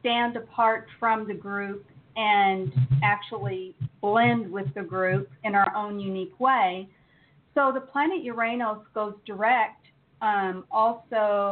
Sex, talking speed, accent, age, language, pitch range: female, 125 wpm, American, 40-59, English, 185-235 Hz